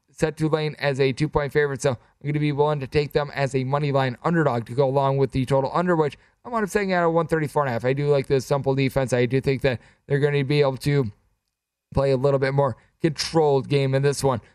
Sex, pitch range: male, 135-160 Hz